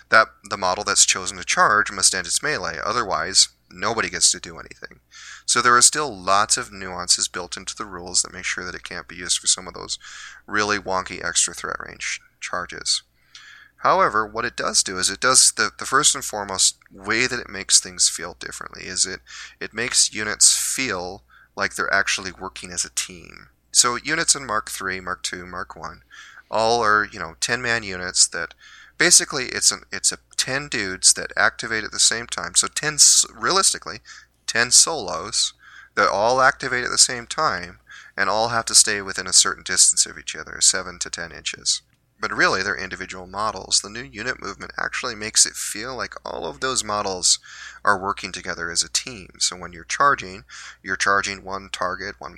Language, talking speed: English, 195 wpm